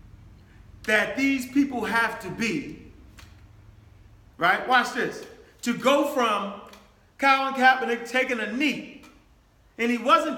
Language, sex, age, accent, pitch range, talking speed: English, male, 40-59, American, 205-300 Hz, 115 wpm